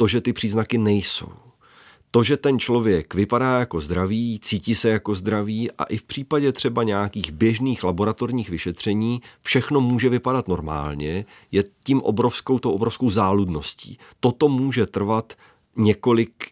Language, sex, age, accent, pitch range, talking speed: Czech, male, 40-59, native, 95-125 Hz, 140 wpm